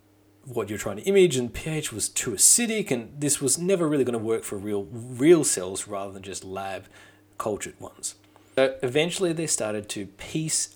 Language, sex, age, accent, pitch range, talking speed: English, male, 30-49, Australian, 100-135 Hz, 190 wpm